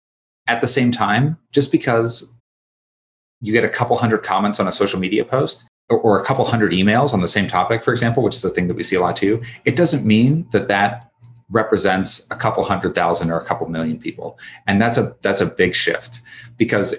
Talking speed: 215 wpm